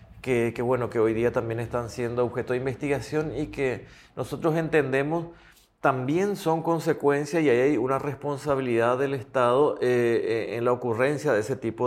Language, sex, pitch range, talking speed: English, male, 115-130 Hz, 160 wpm